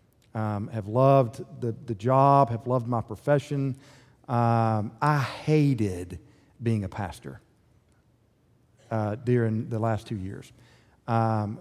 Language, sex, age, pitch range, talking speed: English, male, 40-59, 120-145 Hz, 120 wpm